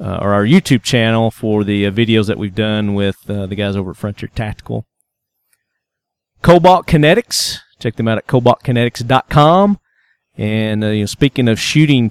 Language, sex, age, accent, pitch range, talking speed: English, male, 40-59, American, 105-125 Hz, 160 wpm